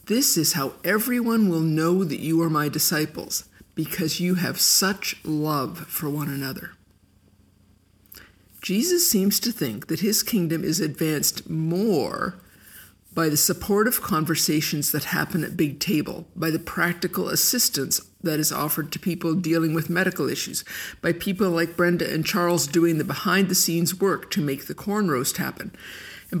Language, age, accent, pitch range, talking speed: English, 50-69, American, 150-190 Hz, 155 wpm